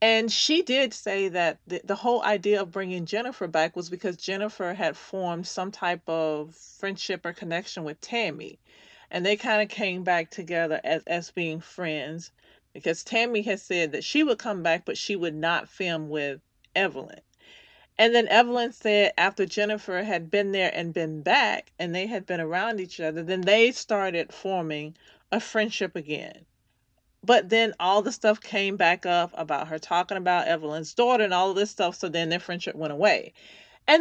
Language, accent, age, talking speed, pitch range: English, American, 40-59, 185 wpm, 170-210 Hz